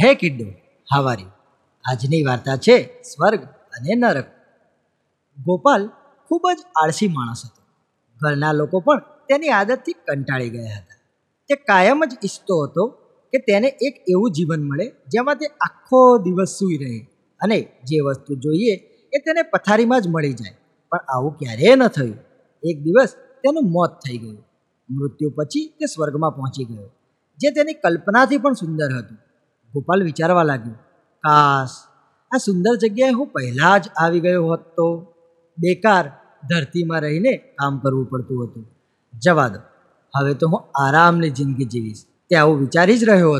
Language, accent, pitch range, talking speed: Gujarati, native, 140-225 Hz, 30 wpm